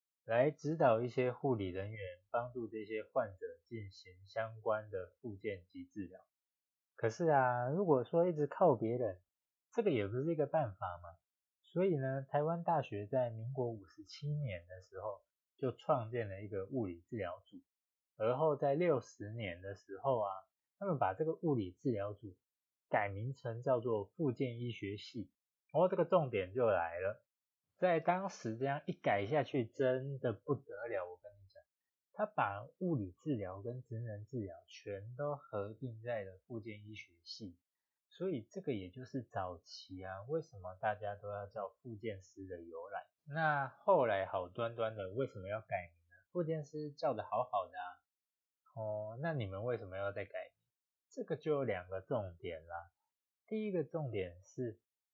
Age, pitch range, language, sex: 20-39, 100-145 Hz, Chinese, male